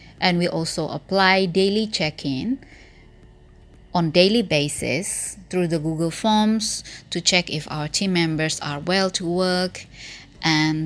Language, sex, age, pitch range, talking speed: English, female, 20-39, 150-190 Hz, 135 wpm